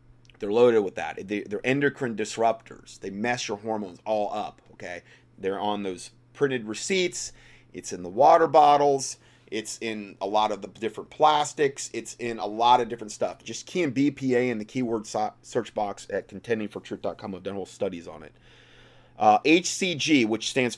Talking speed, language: 175 wpm, English